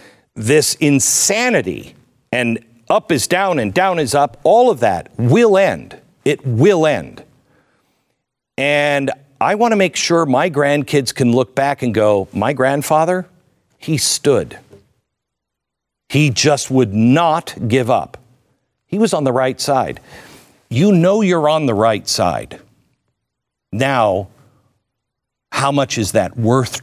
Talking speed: 130 wpm